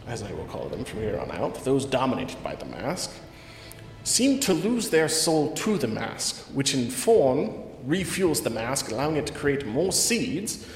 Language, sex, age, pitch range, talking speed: English, male, 30-49, 120-170 Hz, 190 wpm